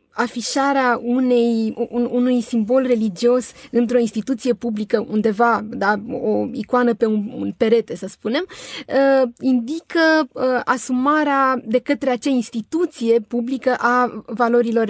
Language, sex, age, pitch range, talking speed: Romanian, female, 20-39, 215-255 Hz, 120 wpm